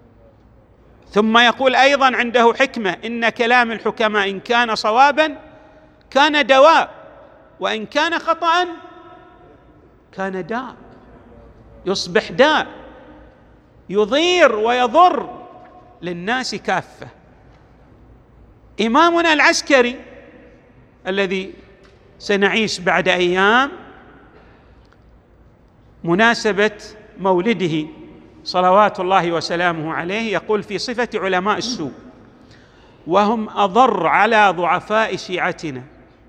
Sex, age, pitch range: male, 50-69, 185-265 Hz